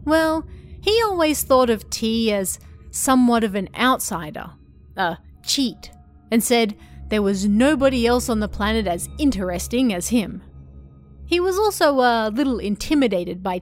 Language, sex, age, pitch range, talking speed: English, female, 30-49, 185-265 Hz, 145 wpm